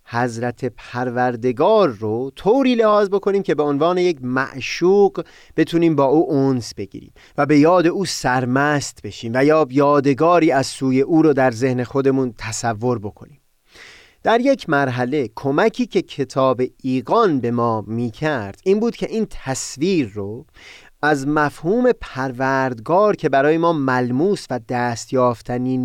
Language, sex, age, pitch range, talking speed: Persian, male, 30-49, 125-165 Hz, 140 wpm